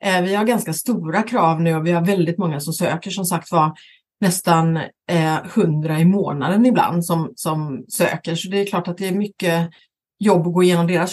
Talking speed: 200 wpm